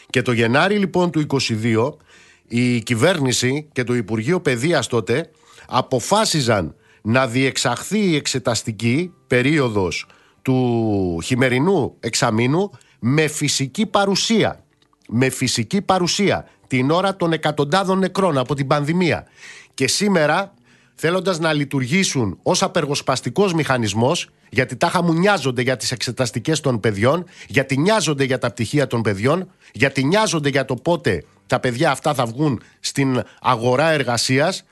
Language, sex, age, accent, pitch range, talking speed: Greek, male, 50-69, native, 120-165 Hz, 125 wpm